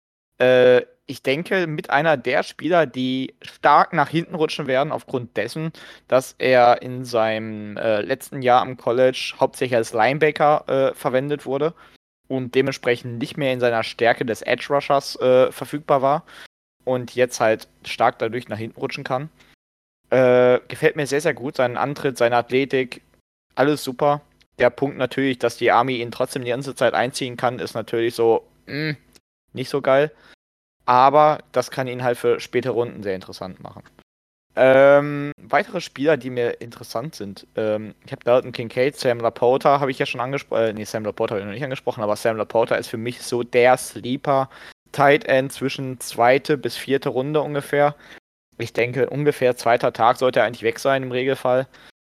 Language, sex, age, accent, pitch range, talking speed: German, male, 20-39, German, 120-140 Hz, 170 wpm